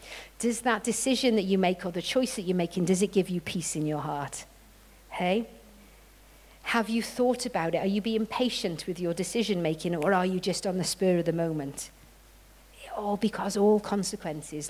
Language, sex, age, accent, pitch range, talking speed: English, female, 50-69, British, 165-205 Hz, 190 wpm